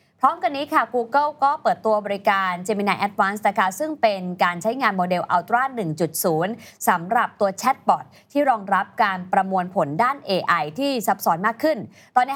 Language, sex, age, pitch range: Thai, female, 20-39, 175-230 Hz